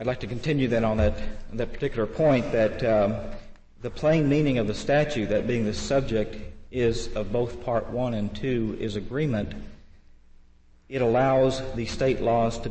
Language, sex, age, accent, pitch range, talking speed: English, male, 50-69, American, 105-125 Hz, 175 wpm